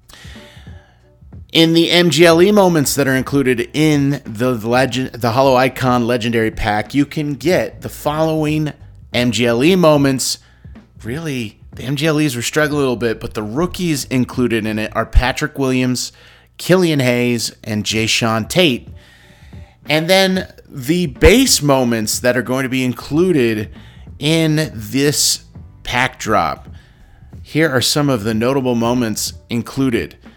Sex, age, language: male, 30-49, English